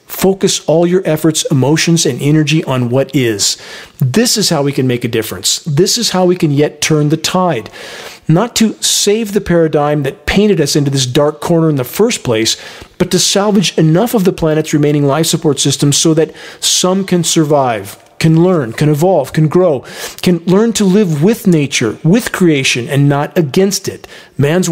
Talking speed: 190 wpm